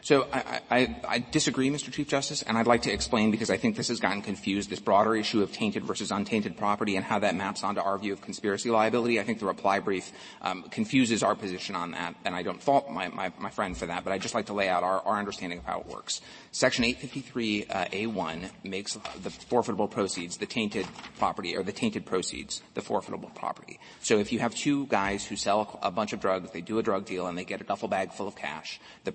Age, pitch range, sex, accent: 30-49, 100-120 Hz, male, American